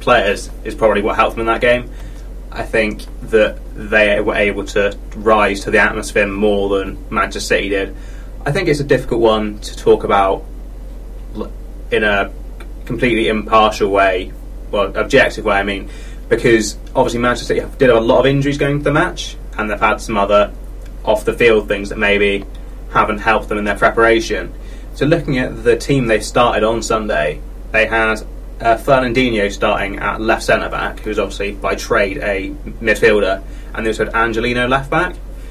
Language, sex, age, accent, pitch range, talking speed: English, male, 20-39, British, 105-120 Hz, 175 wpm